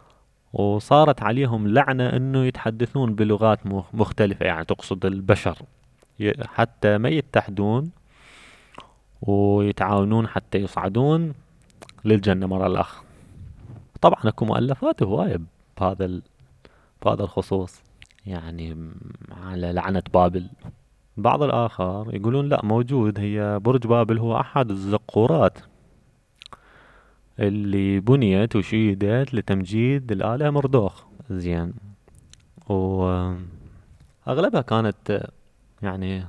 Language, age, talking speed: Arabic, 20-39, 85 wpm